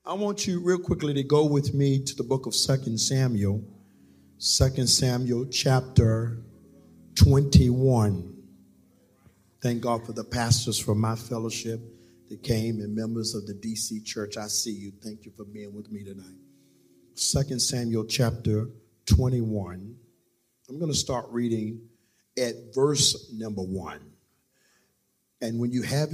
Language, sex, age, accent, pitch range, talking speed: English, male, 50-69, American, 105-125 Hz, 140 wpm